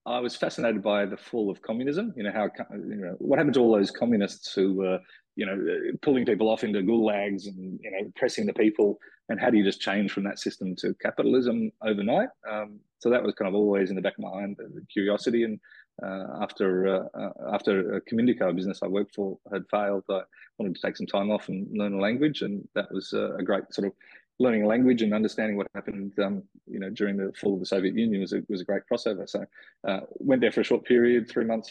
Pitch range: 100-115 Hz